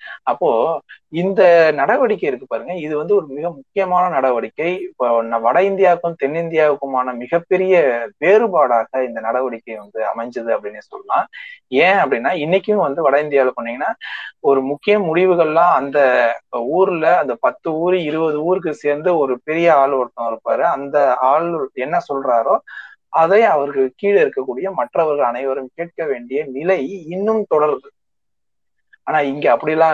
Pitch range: 135-195 Hz